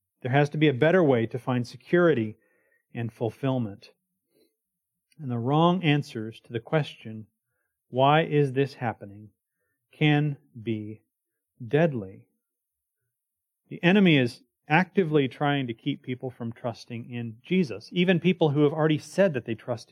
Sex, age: male, 30-49